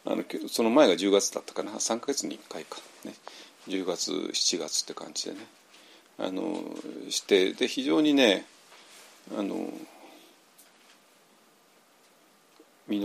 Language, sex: Japanese, male